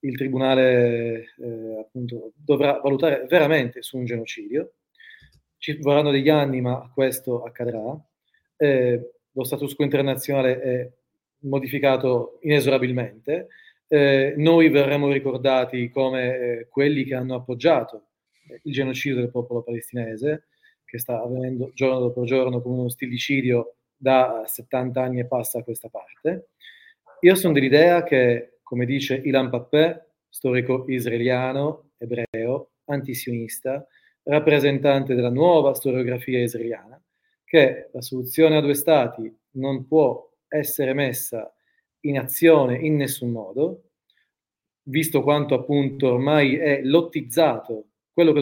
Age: 30-49